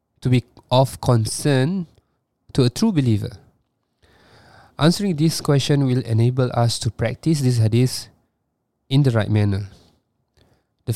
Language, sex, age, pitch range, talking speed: Malay, male, 20-39, 110-135 Hz, 125 wpm